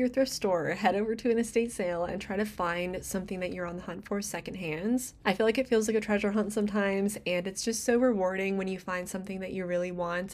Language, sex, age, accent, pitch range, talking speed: English, female, 20-39, American, 185-230 Hz, 255 wpm